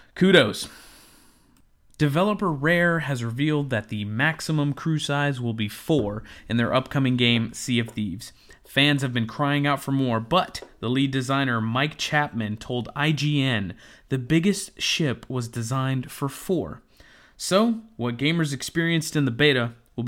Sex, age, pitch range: male, 30-49, 115-140 Hz